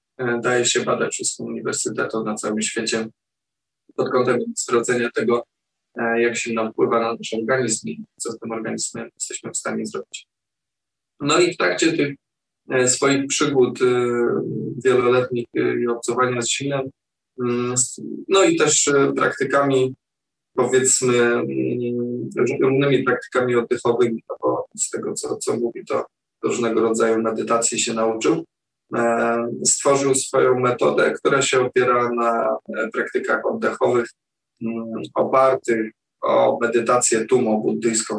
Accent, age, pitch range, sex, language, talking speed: native, 20-39, 115-135 Hz, male, Polish, 115 wpm